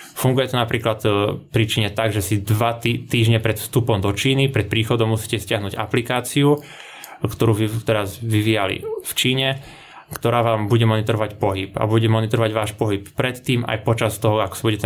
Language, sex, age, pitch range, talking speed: Slovak, male, 20-39, 105-120 Hz, 170 wpm